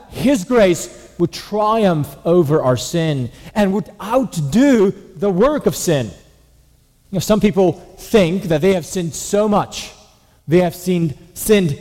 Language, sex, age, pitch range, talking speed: English, male, 40-59, 125-200 Hz, 130 wpm